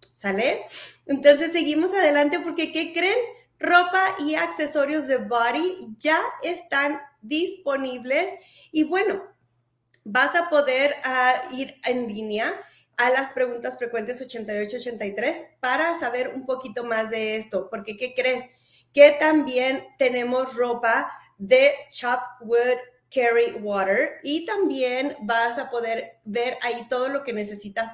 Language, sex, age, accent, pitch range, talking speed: Spanish, female, 30-49, Mexican, 230-295 Hz, 130 wpm